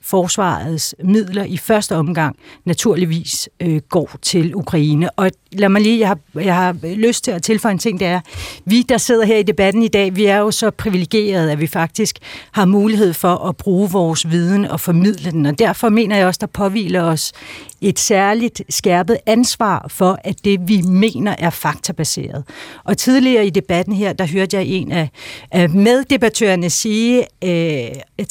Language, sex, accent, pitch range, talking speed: Danish, female, native, 170-215 Hz, 180 wpm